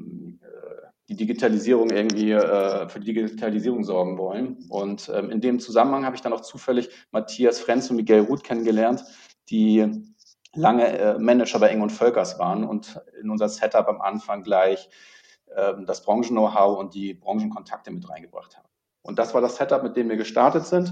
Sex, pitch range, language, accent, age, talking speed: male, 110-130 Hz, German, German, 40-59, 170 wpm